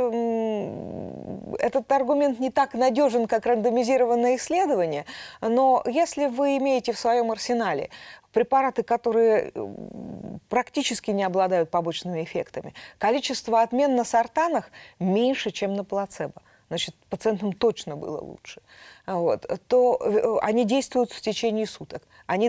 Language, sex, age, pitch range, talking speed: Russian, female, 20-39, 200-255 Hz, 110 wpm